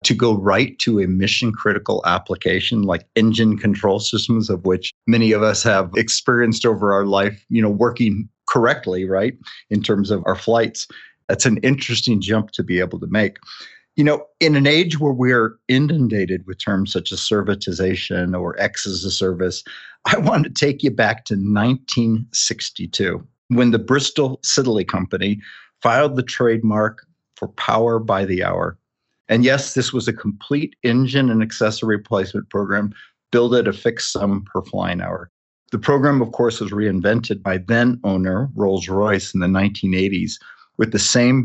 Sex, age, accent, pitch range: male, 50-69, American, 100-120 Hz